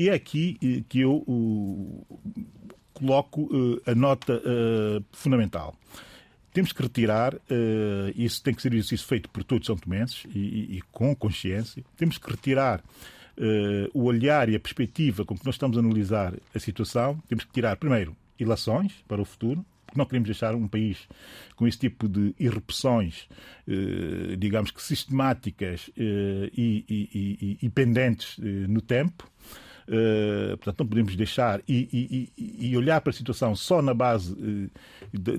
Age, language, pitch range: 40-59, Portuguese, 105-140 Hz